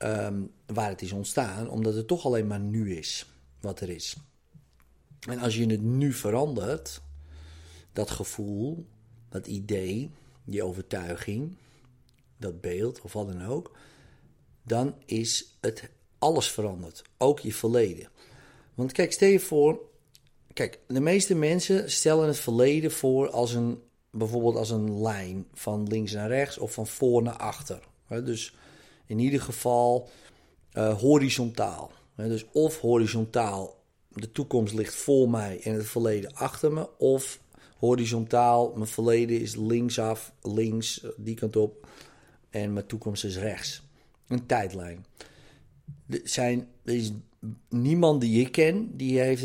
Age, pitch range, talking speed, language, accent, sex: 50-69, 105-130 Hz, 140 wpm, Dutch, Dutch, male